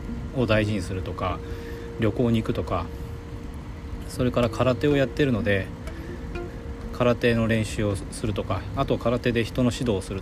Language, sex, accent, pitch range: Japanese, male, native, 90-130 Hz